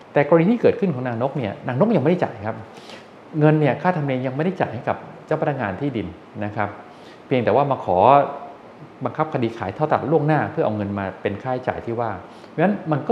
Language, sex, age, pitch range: English, male, 20-39, 100-140 Hz